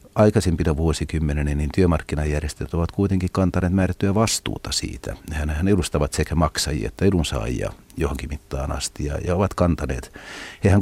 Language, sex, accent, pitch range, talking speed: Finnish, male, native, 75-100 Hz, 135 wpm